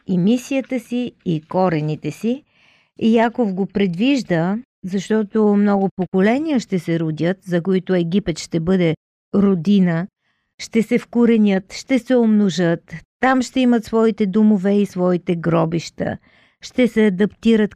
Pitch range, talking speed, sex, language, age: 185-235 Hz, 130 wpm, female, Bulgarian, 50-69